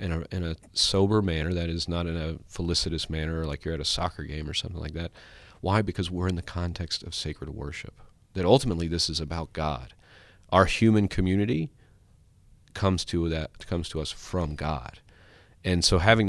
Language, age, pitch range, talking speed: English, 40-59, 80-95 Hz, 190 wpm